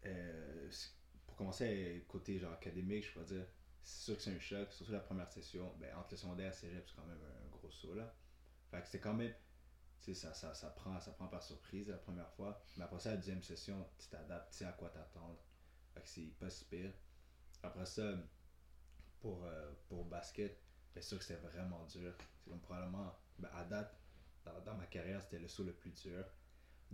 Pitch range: 80-95 Hz